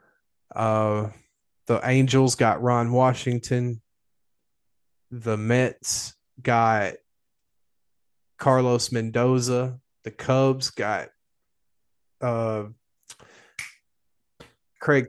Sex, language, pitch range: male, English, 110-125 Hz